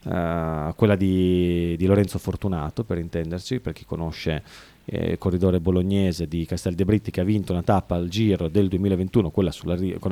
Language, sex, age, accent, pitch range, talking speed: Italian, male, 30-49, native, 90-120 Hz, 170 wpm